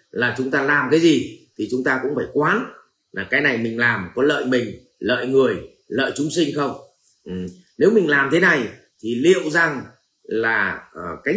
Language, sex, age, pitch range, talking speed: Vietnamese, male, 30-49, 125-170 Hz, 190 wpm